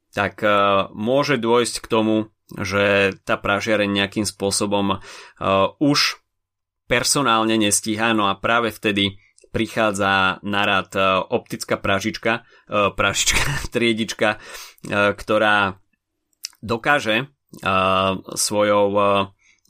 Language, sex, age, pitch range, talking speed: Slovak, male, 30-49, 100-115 Hz, 80 wpm